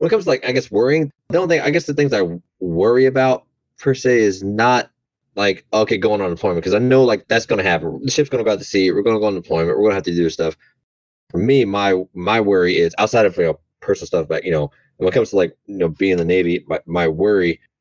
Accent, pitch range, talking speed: American, 80-110 Hz, 275 wpm